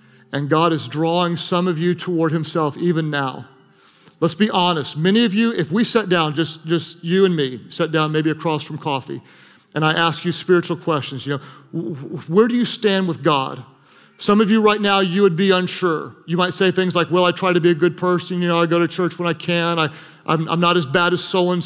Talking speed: 240 wpm